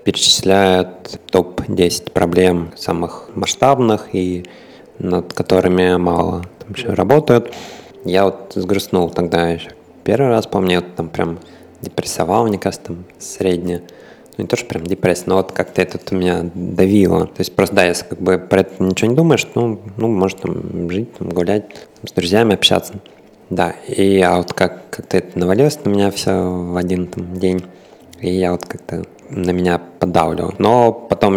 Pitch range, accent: 90-100 Hz, native